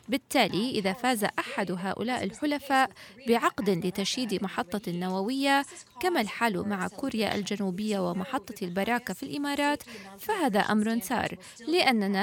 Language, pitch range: Arabic, 200-265 Hz